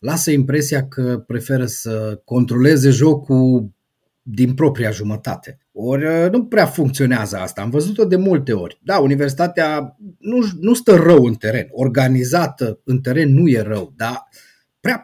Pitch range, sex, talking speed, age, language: 125-200 Hz, male, 145 wpm, 30-49, Romanian